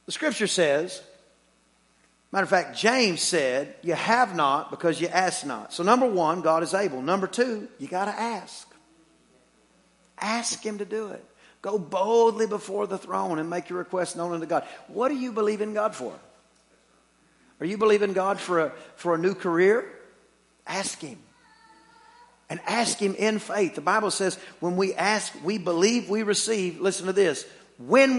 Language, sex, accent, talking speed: English, male, American, 170 wpm